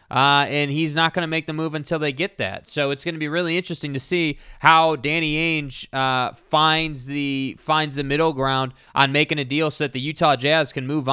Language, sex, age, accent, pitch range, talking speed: English, male, 20-39, American, 140-170 Hz, 230 wpm